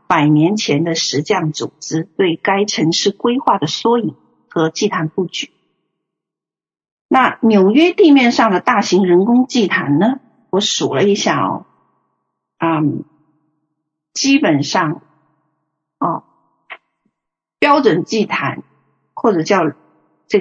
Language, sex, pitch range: Chinese, female, 160-230 Hz